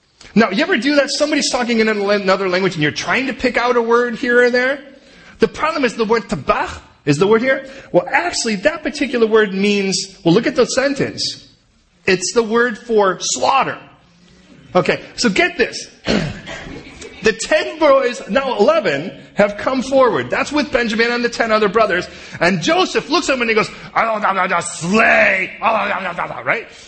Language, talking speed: English, 180 wpm